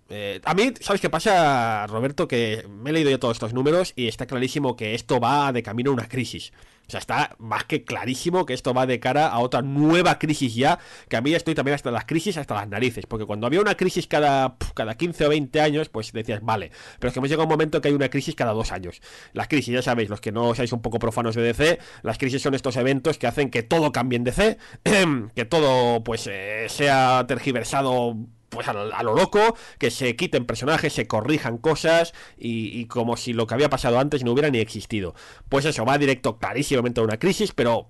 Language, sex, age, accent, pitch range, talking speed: Spanish, male, 20-39, Spanish, 120-155 Hz, 235 wpm